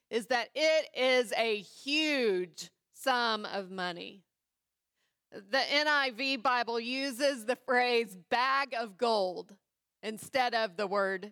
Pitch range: 210-275 Hz